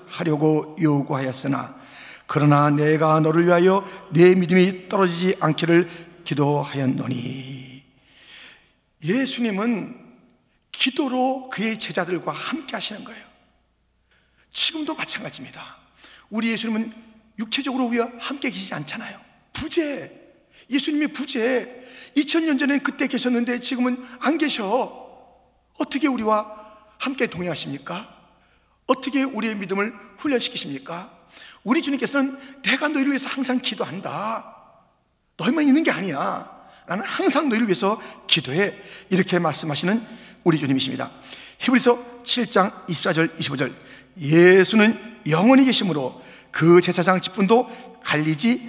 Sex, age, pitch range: male, 40-59, 165-250 Hz